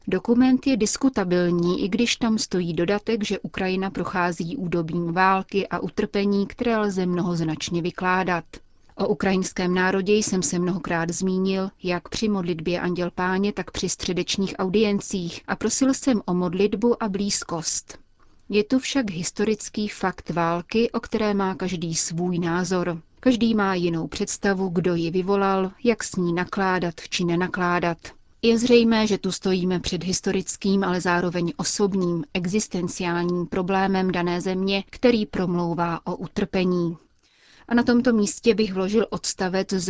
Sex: female